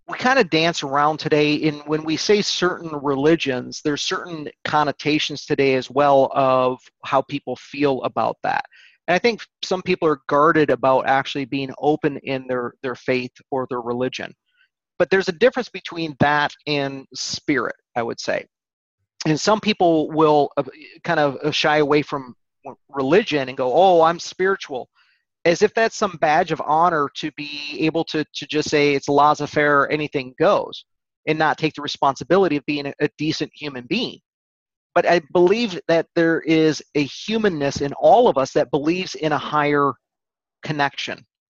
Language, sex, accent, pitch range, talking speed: English, male, American, 140-170 Hz, 170 wpm